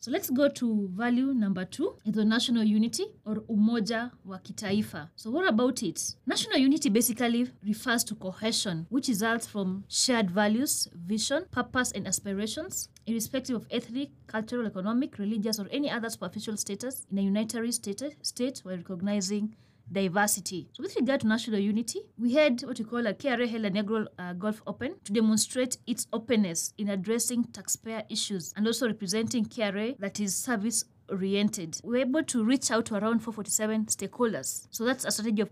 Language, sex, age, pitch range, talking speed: English, female, 20-39, 200-240 Hz, 170 wpm